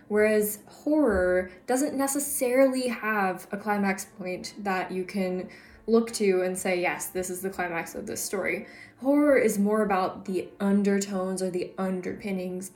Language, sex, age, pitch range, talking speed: English, female, 10-29, 190-240 Hz, 150 wpm